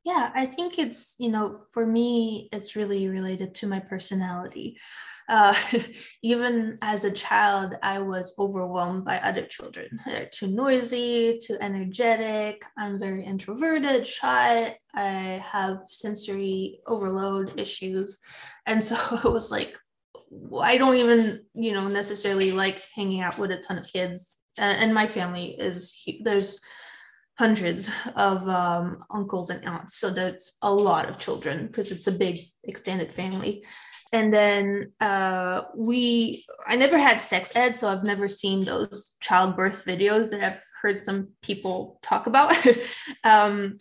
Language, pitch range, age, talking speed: English, 190-230 Hz, 20-39, 145 wpm